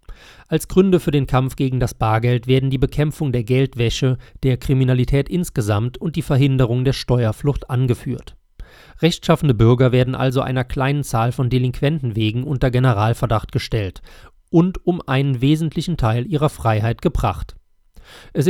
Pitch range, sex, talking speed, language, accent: 120-145 Hz, male, 145 wpm, German, German